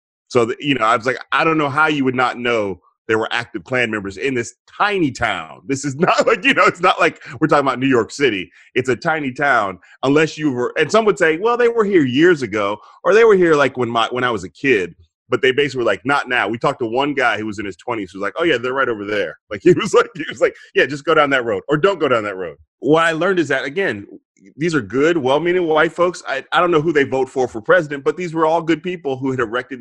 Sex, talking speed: male, 290 wpm